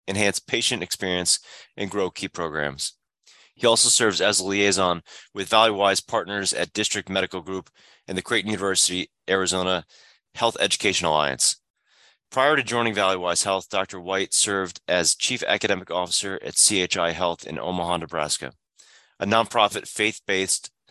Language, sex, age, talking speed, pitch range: English, male, 30-49, 140 wpm, 85-105 Hz